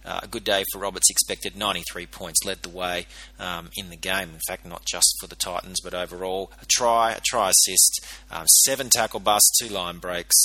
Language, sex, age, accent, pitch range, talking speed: English, male, 30-49, Australian, 95-135 Hz, 215 wpm